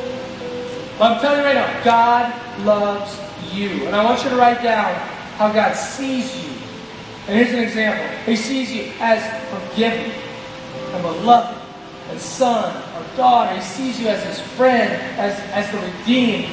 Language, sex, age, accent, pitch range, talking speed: English, male, 30-49, American, 215-260 Hz, 165 wpm